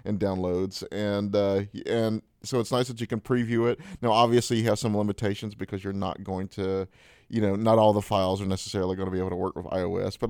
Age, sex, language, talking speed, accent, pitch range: 30-49, male, English, 240 wpm, American, 100-115 Hz